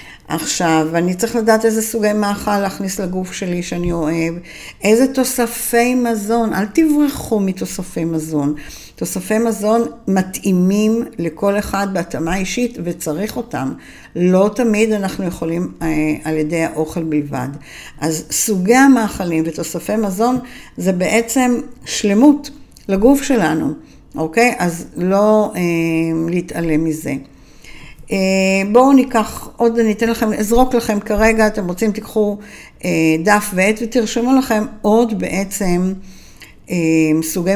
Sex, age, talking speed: female, 50-69, 115 wpm